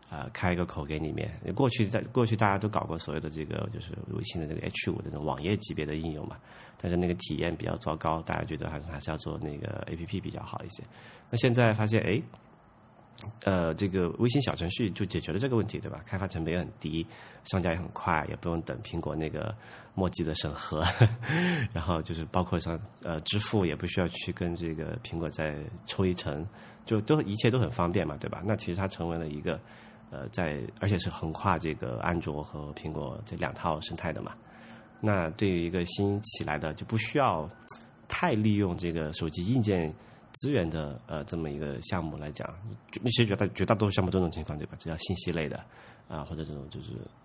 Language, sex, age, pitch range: Chinese, male, 30-49, 80-110 Hz